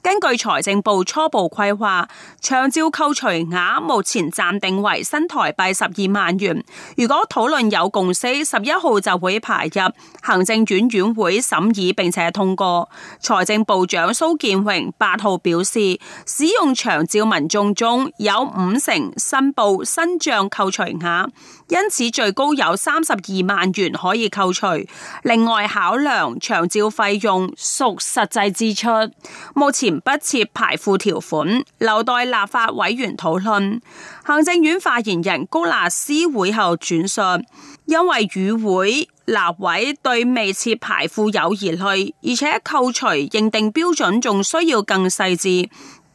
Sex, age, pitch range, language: female, 30-49, 190-265 Hz, Chinese